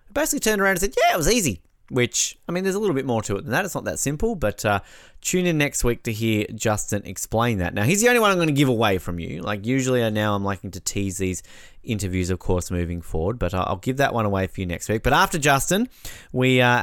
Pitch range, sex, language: 100-135 Hz, male, English